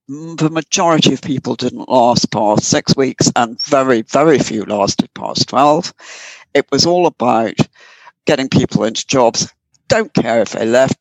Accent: British